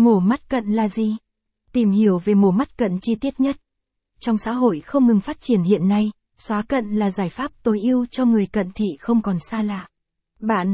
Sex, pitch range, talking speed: female, 205-240 Hz, 220 wpm